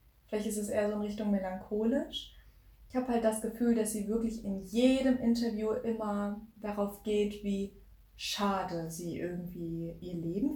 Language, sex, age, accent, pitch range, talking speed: German, female, 20-39, German, 190-235 Hz, 160 wpm